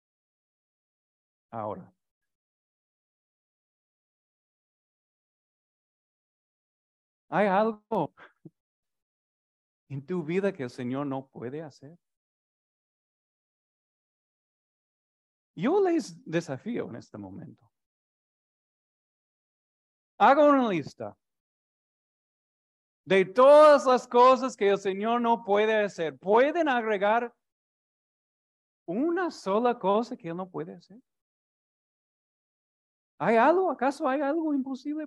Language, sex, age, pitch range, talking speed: Spanish, male, 40-59, 200-275 Hz, 80 wpm